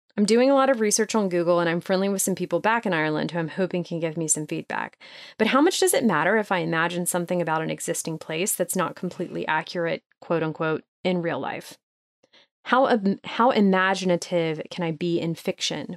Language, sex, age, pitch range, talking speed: English, female, 30-49, 170-215 Hz, 210 wpm